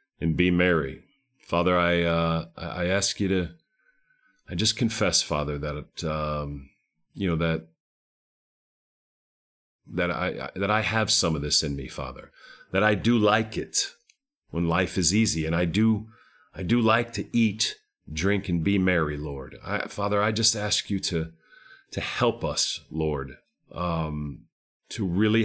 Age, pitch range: 40-59, 80-105 Hz